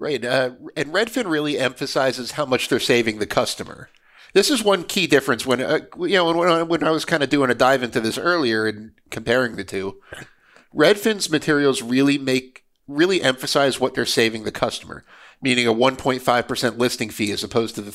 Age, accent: 50-69, American